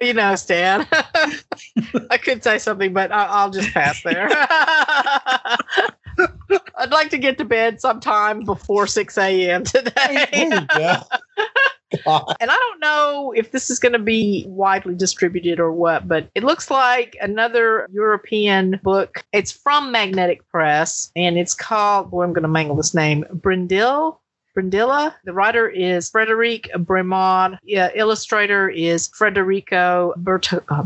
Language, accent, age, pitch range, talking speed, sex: English, American, 50-69, 170-225 Hz, 140 wpm, female